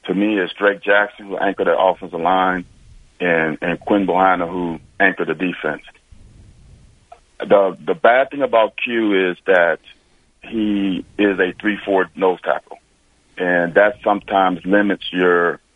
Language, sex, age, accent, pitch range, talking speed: English, male, 40-59, American, 90-105 Hz, 140 wpm